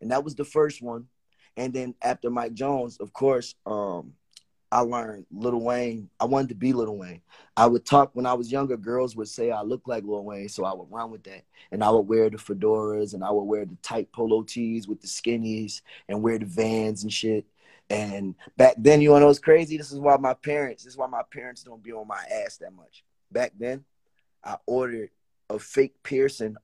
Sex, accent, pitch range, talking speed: male, American, 105-130 Hz, 225 wpm